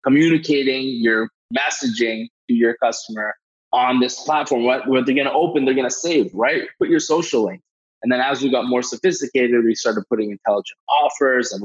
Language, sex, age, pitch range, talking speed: English, male, 20-39, 115-135 Hz, 190 wpm